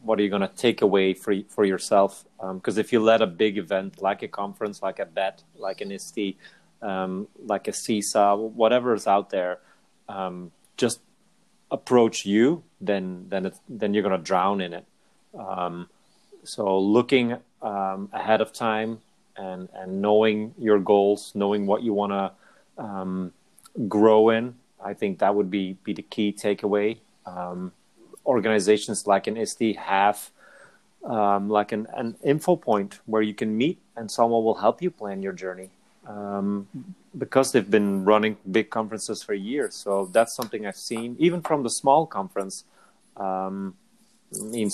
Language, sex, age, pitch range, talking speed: English, male, 30-49, 95-110 Hz, 165 wpm